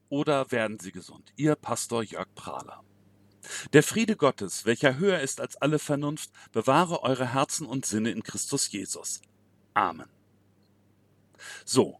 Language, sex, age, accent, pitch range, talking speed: German, male, 40-59, German, 115-155 Hz, 135 wpm